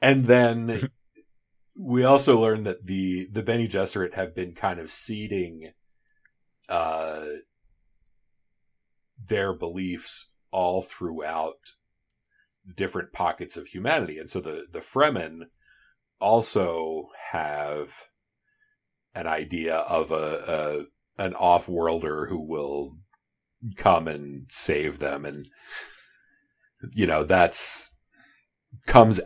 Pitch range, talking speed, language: 75-95 Hz, 100 wpm, English